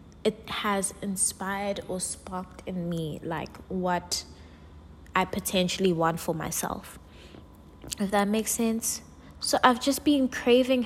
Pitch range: 175-215 Hz